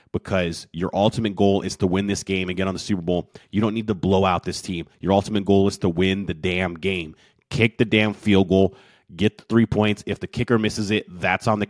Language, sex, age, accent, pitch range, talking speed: English, male, 30-49, American, 90-105 Hz, 250 wpm